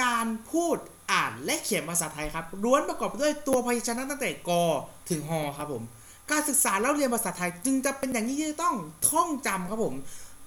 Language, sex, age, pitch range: Thai, male, 30-49, 180-260 Hz